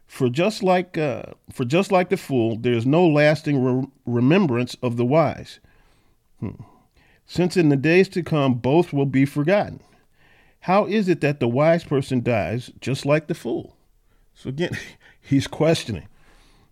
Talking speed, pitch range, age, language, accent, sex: 160 wpm, 120-155 Hz, 40-59, English, American, male